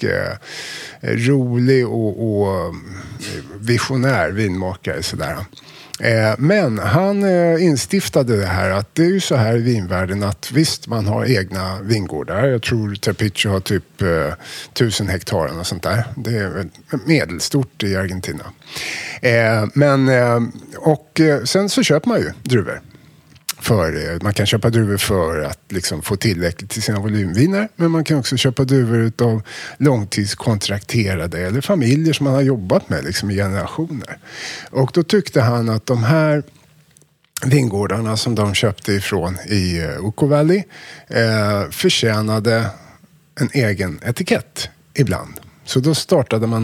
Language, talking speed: Swedish, 135 wpm